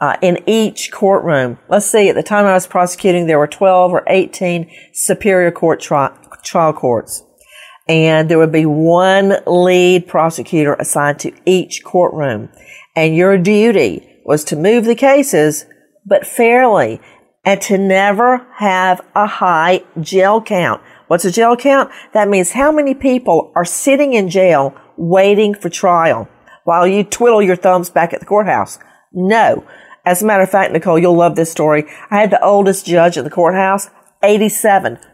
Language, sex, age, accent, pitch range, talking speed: English, female, 50-69, American, 170-225 Hz, 165 wpm